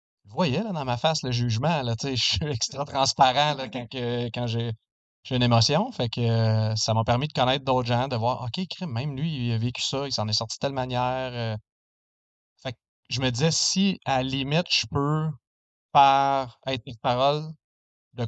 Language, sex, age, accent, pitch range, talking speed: French, male, 30-49, Canadian, 110-135 Hz, 210 wpm